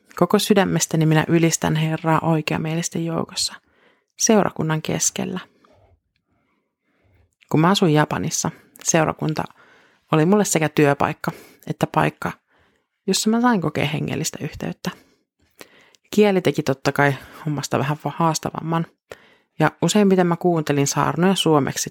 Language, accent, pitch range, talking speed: Finnish, native, 140-175 Hz, 105 wpm